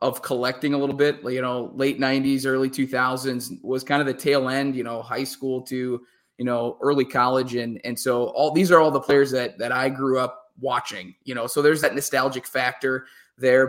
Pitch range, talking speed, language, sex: 125-145 Hz, 220 wpm, English, male